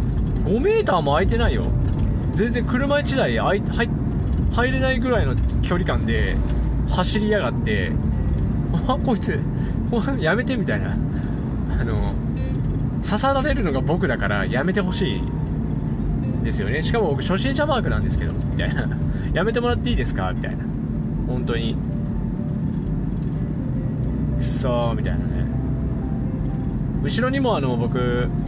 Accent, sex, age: native, male, 20-39